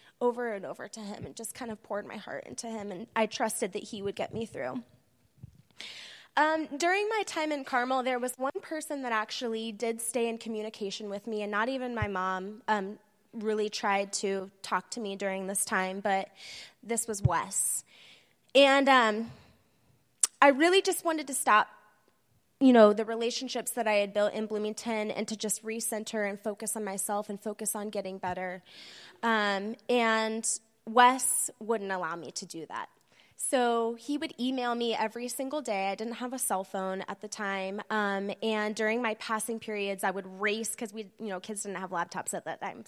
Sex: female